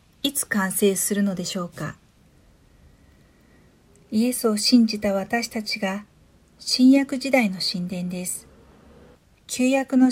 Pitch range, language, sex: 190-225 Hz, Japanese, female